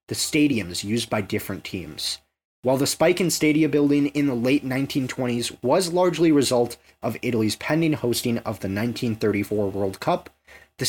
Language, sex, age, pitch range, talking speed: English, male, 20-39, 105-145 Hz, 165 wpm